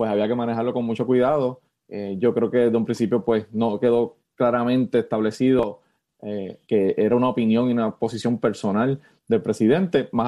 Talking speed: 180 wpm